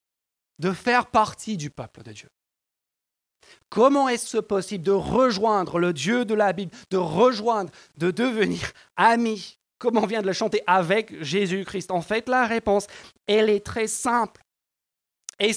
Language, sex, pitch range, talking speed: French, male, 200-250 Hz, 150 wpm